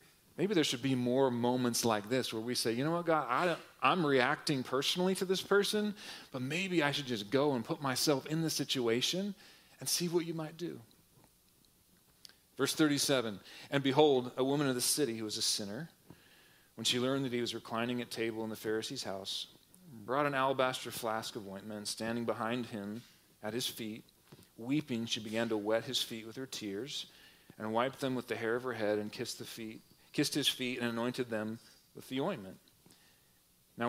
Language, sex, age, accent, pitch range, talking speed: English, male, 40-59, American, 110-140 Hz, 200 wpm